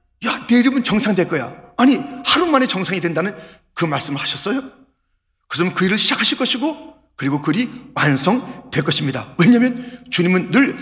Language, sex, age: Korean, male, 40-59